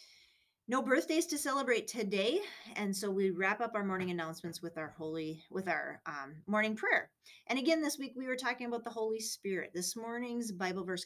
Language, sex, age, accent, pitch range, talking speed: English, female, 30-49, American, 175-220 Hz, 195 wpm